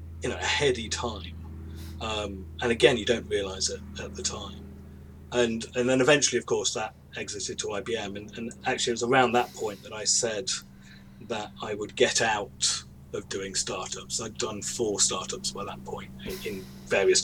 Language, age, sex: English, 30-49, male